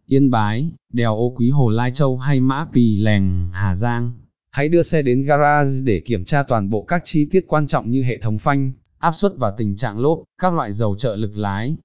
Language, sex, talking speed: Vietnamese, male, 230 wpm